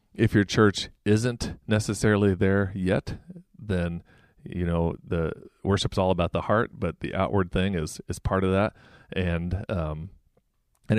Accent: American